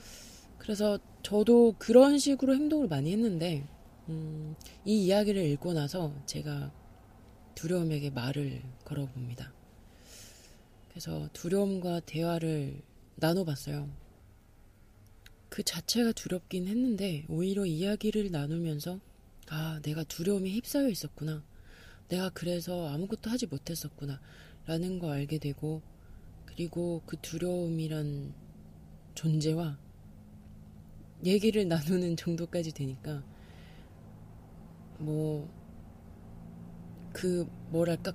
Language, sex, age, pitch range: Korean, female, 20-39, 120-185 Hz